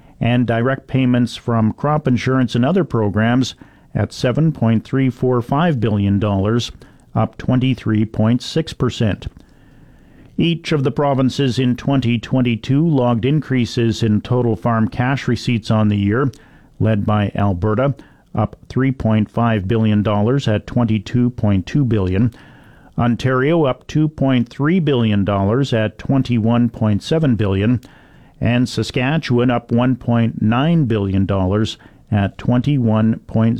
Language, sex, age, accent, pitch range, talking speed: English, male, 50-69, American, 110-130 Hz, 105 wpm